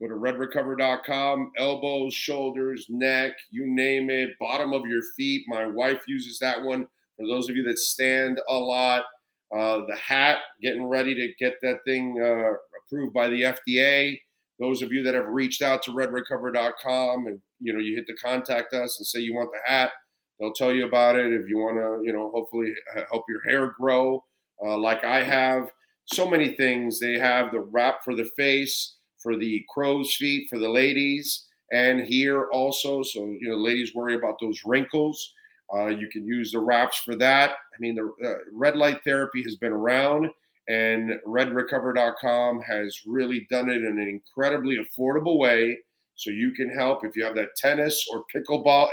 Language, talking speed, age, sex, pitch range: English, 185 wpm, 40-59, male, 120-140 Hz